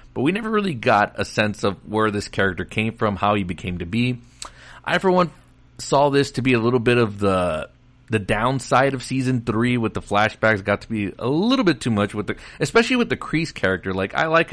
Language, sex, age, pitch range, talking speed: English, male, 30-49, 100-130 Hz, 230 wpm